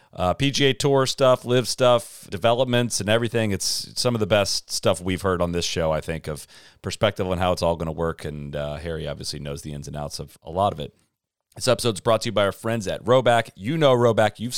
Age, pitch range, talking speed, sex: 40-59, 90-120 Hz, 245 wpm, male